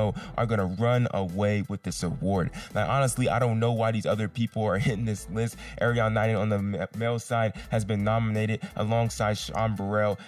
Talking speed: 195 wpm